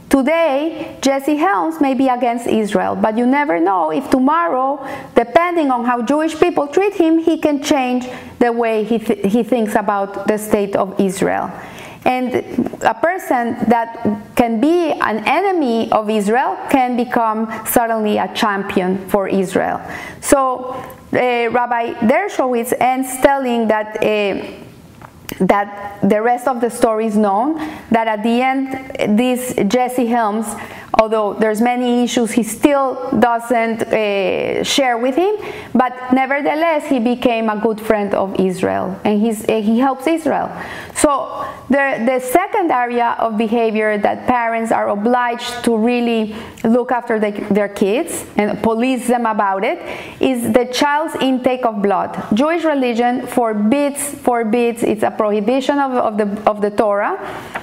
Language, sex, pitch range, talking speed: English, female, 220-270 Hz, 145 wpm